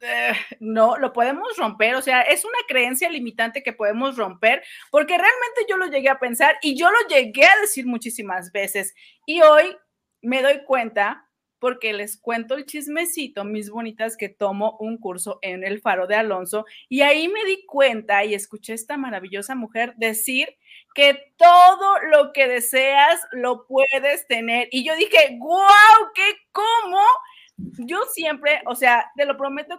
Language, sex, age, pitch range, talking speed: Spanish, female, 30-49, 225-300 Hz, 165 wpm